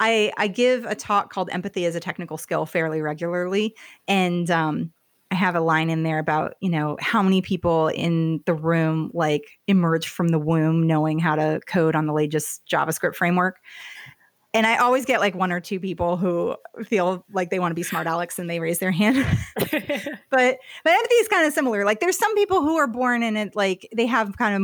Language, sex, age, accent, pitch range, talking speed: English, female, 30-49, American, 170-225 Hz, 215 wpm